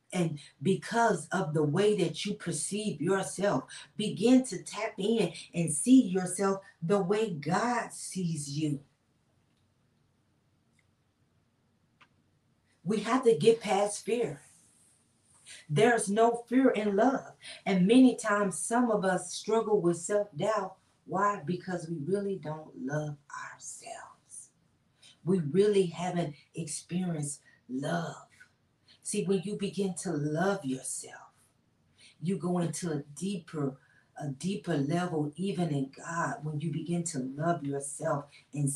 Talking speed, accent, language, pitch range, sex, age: 120 wpm, American, English, 150-195 Hz, female, 40-59